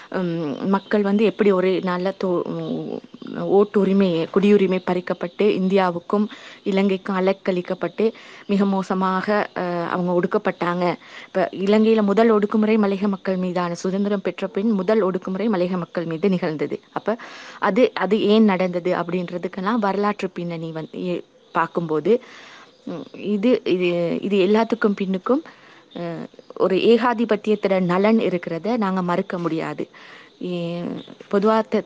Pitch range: 180-215 Hz